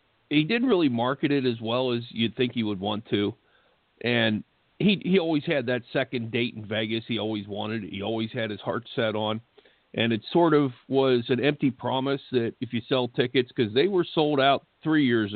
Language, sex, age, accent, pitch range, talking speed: English, male, 50-69, American, 115-140 Hz, 215 wpm